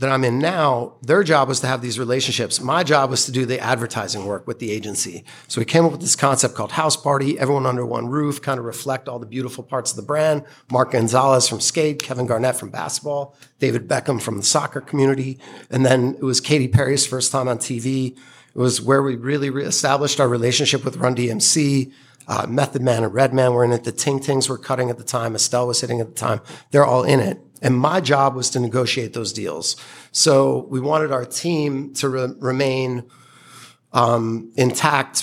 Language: English